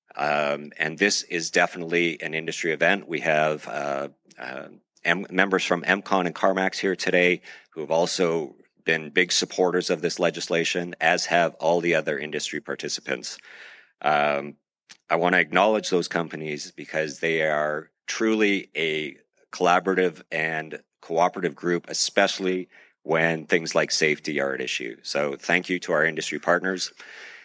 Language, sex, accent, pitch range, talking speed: English, male, American, 80-95 Hz, 145 wpm